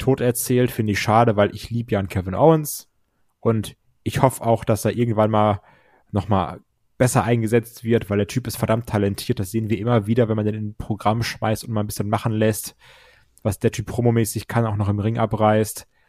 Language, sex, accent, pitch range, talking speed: German, male, German, 110-135 Hz, 215 wpm